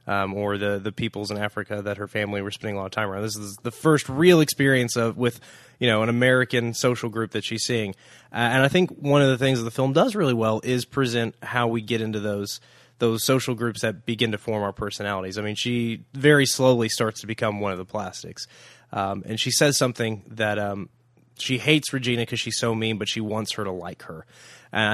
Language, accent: English, American